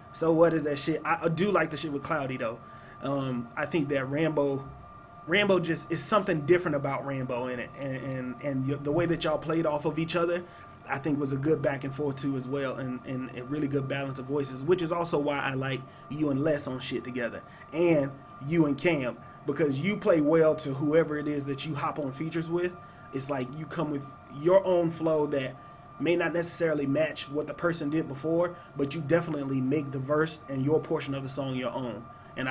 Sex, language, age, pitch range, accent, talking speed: male, English, 30-49, 135-165 Hz, American, 225 wpm